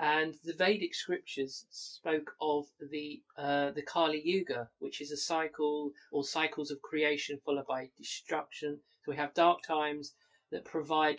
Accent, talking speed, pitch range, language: British, 155 wpm, 140-175 Hz, English